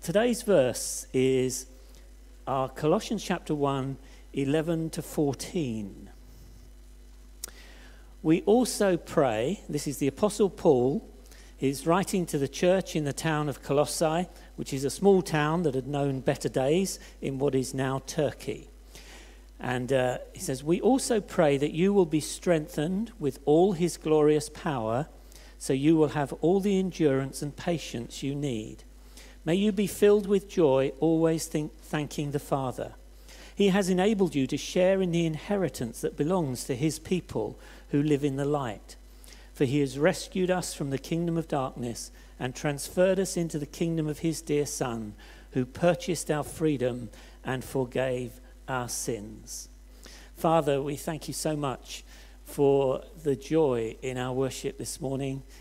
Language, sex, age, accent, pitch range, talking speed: English, male, 50-69, British, 135-170 Hz, 155 wpm